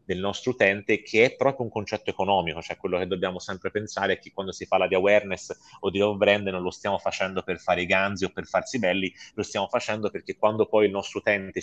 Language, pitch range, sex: Italian, 95-115 Hz, male